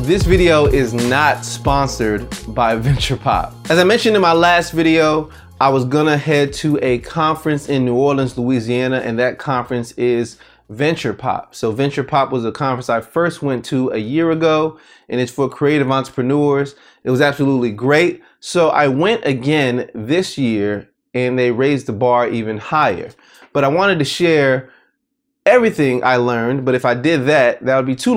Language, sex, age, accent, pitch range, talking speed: English, male, 30-49, American, 125-155 Hz, 175 wpm